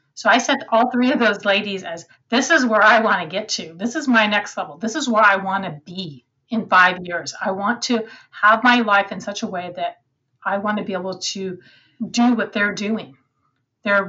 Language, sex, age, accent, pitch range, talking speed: English, female, 30-49, American, 180-235 Hz, 235 wpm